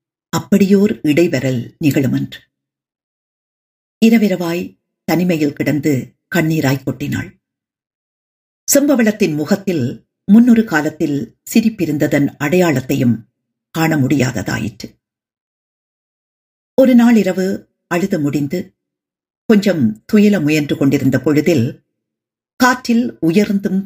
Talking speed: 65 wpm